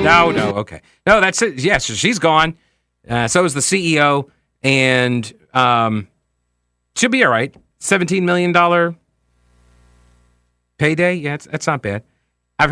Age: 40-59